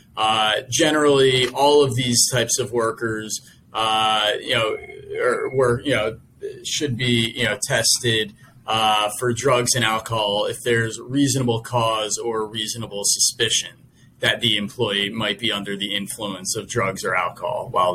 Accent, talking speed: American, 150 wpm